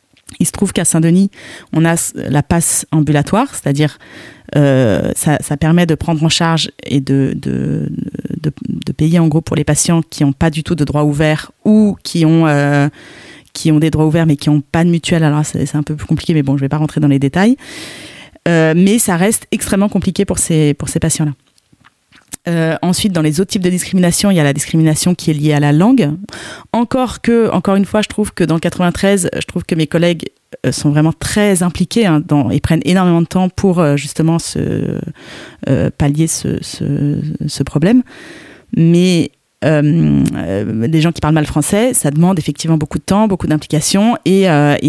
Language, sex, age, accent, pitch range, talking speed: French, female, 30-49, French, 150-185 Hz, 205 wpm